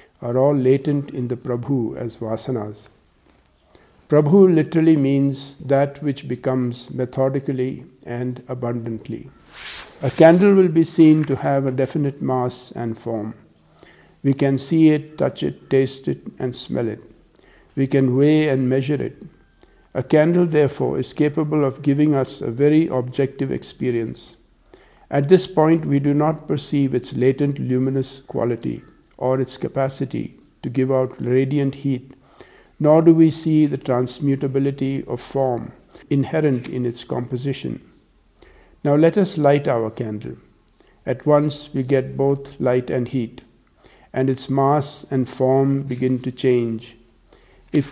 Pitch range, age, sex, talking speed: 125-145 Hz, 60-79, male, 140 wpm